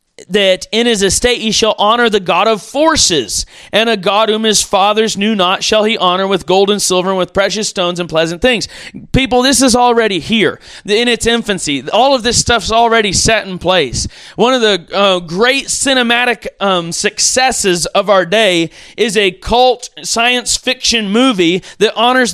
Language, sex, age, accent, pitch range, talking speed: English, male, 30-49, American, 205-245 Hz, 185 wpm